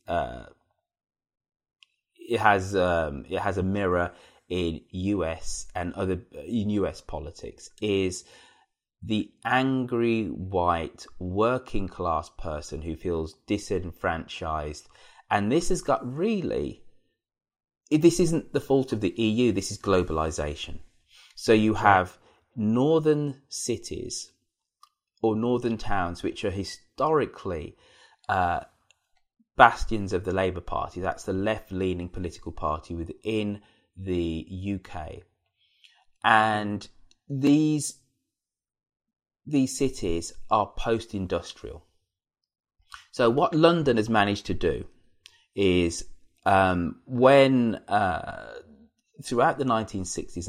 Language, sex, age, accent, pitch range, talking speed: English, male, 20-39, British, 90-130 Hz, 105 wpm